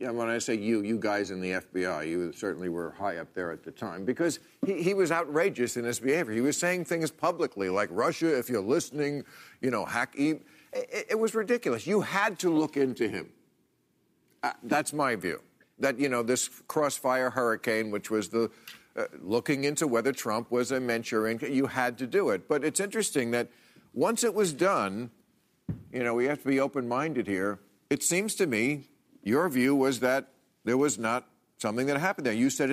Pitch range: 120-155 Hz